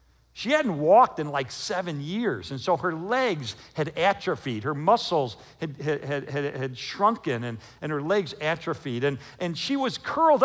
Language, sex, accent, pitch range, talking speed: English, male, American, 115-170 Hz, 160 wpm